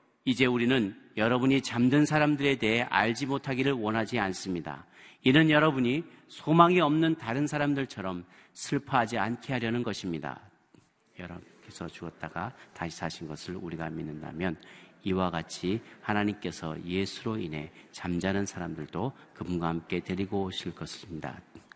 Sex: male